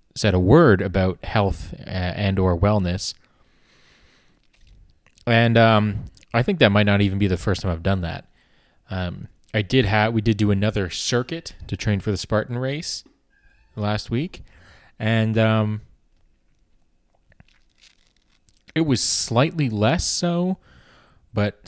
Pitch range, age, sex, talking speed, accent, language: 90-110 Hz, 20-39, male, 135 wpm, American, English